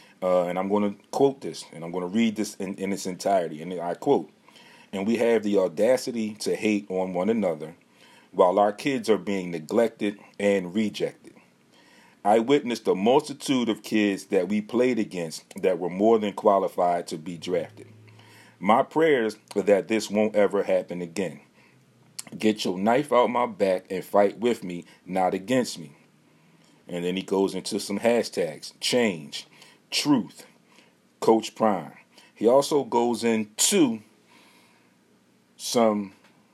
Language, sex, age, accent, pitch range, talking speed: English, male, 40-59, American, 95-110 Hz, 155 wpm